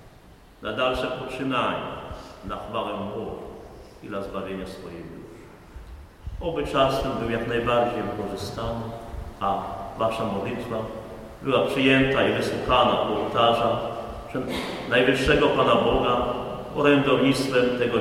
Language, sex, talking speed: Polish, male, 105 wpm